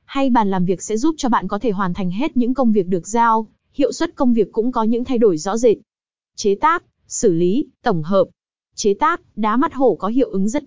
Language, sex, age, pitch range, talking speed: Vietnamese, female, 20-39, 195-260 Hz, 245 wpm